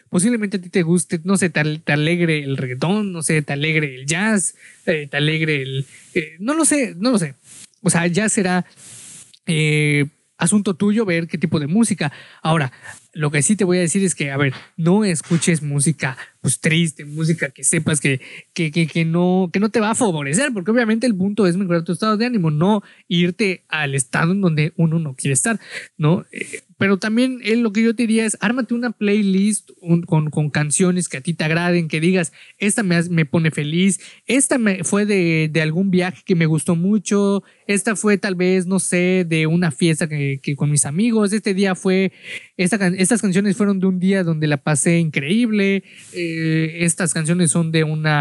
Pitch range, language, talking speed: 160-205 Hz, Spanish, 205 wpm